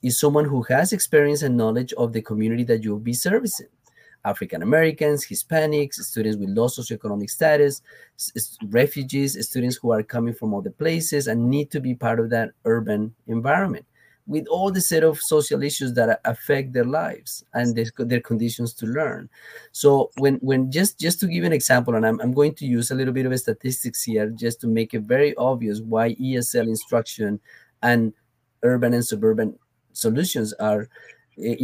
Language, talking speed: English, 175 wpm